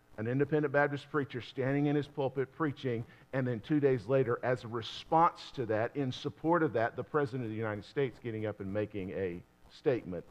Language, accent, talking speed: English, American, 205 wpm